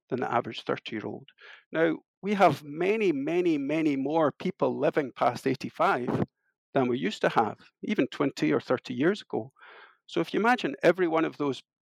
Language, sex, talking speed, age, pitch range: English, male, 185 wpm, 50-69, 120-150 Hz